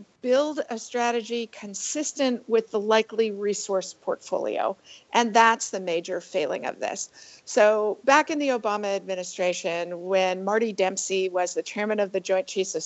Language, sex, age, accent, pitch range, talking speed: English, female, 50-69, American, 195-245 Hz, 155 wpm